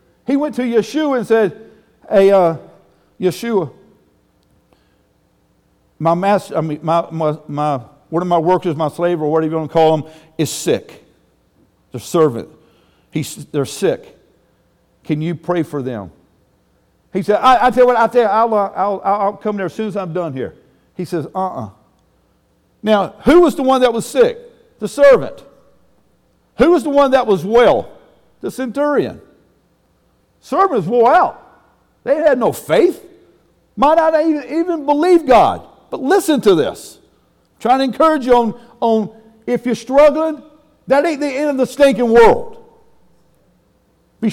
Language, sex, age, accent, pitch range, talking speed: English, male, 50-69, American, 175-275 Hz, 165 wpm